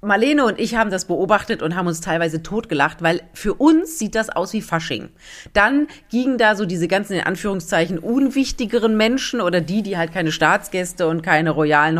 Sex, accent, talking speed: female, German, 190 wpm